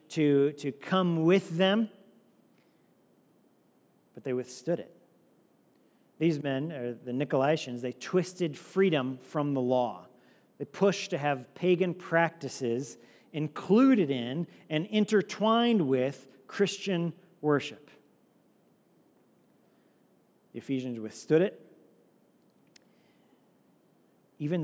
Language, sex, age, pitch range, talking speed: English, male, 40-59, 150-210 Hz, 95 wpm